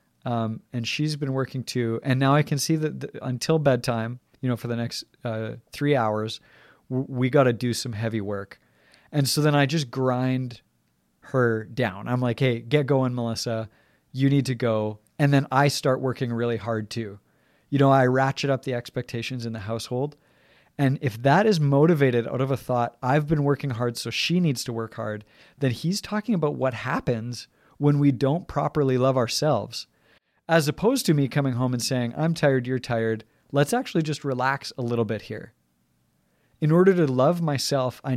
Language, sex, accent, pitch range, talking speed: English, male, American, 115-145 Hz, 190 wpm